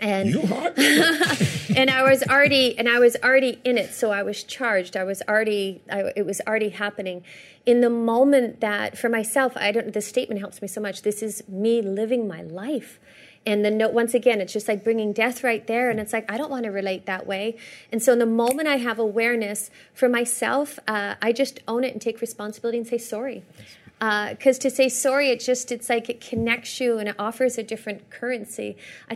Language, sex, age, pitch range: English, female, 30-49, 210-245 Hz